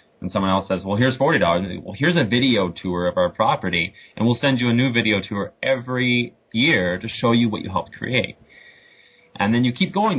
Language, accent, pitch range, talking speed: English, American, 95-120 Hz, 225 wpm